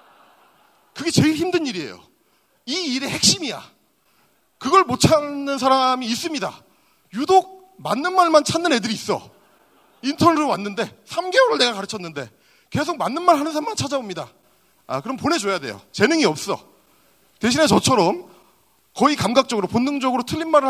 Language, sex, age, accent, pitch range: Korean, male, 40-59, native, 210-295 Hz